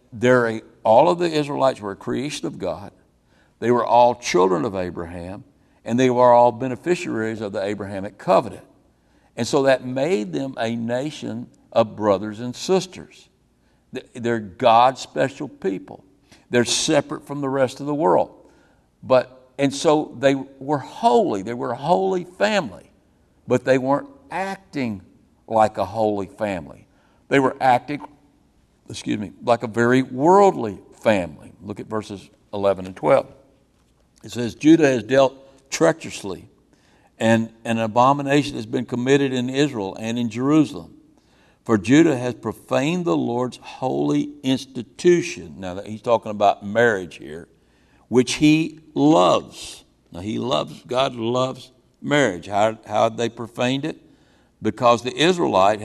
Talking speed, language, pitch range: 140 wpm, English, 110-135 Hz